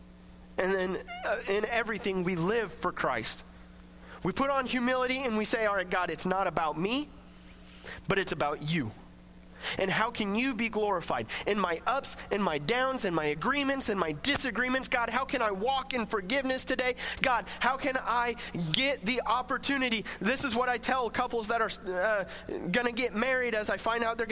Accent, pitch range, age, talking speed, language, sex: American, 175-250 Hz, 30-49, 190 wpm, English, male